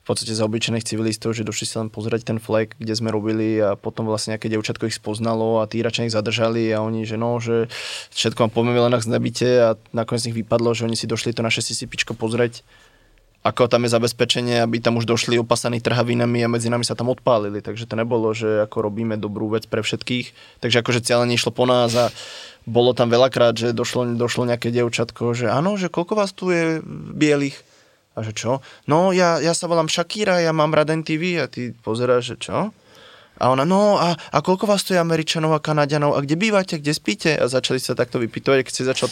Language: Slovak